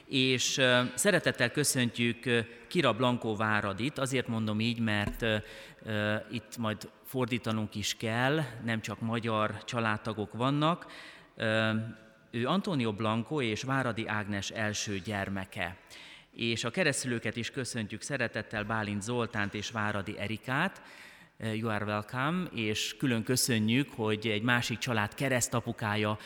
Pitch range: 105-120 Hz